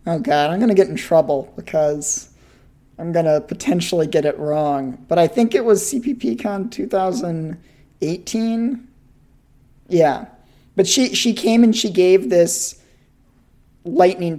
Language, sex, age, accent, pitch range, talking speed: English, male, 40-59, American, 150-185 Hz, 140 wpm